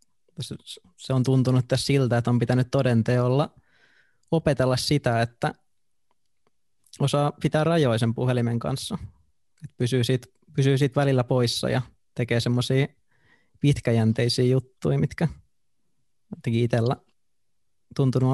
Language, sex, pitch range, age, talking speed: Finnish, male, 120-140 Hz, 20-39, 105 wpm